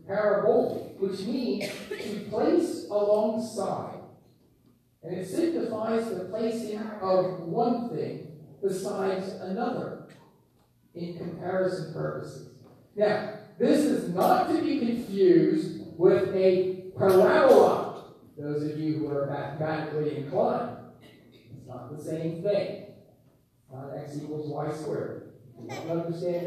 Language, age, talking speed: English, 40-59, 110 wpm